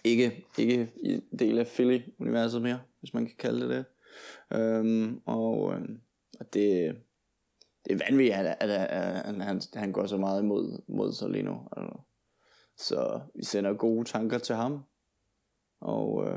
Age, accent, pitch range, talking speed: 20-39, native, 110-125 Hz, 130 wpm